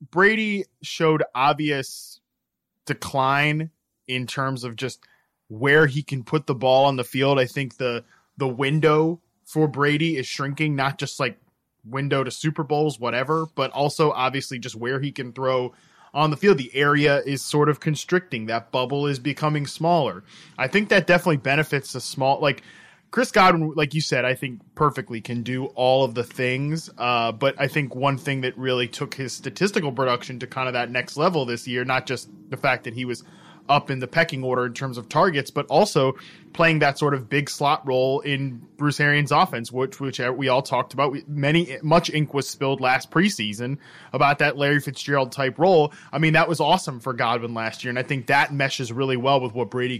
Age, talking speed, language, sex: 20-39, 200 wpm, English, male